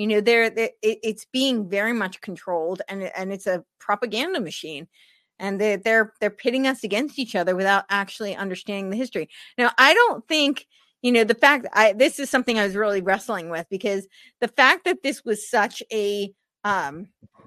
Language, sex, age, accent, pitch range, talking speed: English, female, 30-49, American, 195-240 Hz, 190 wpm